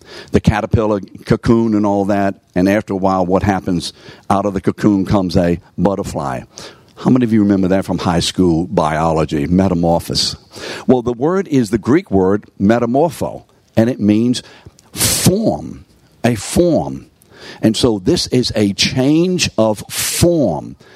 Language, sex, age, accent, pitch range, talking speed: English, male, 60-79, American, 100-135 Hz, 150 wpm